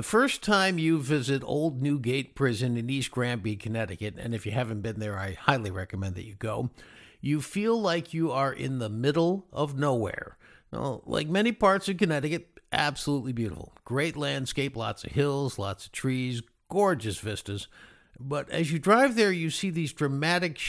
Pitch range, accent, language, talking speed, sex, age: 115-175 Hz, American, English, 175 wpm, male, 50-69